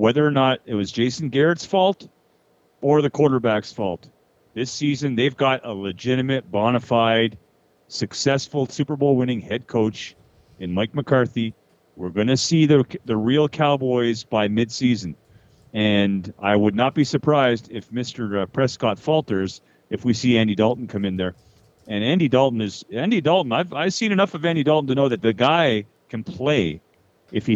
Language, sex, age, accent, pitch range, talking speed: English, male, 40-59, American, 110-145 Hz, 170 wpm